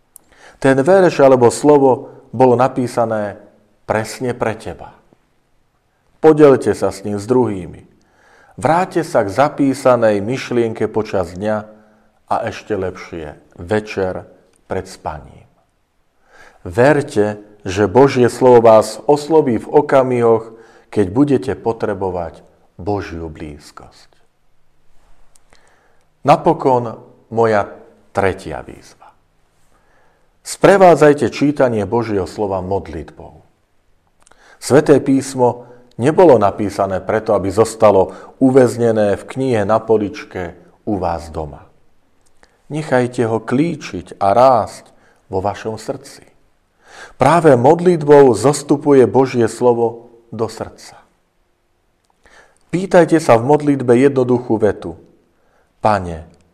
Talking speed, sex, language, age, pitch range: 90 wpm, male, Slovak, 50-69, 95-130 Hz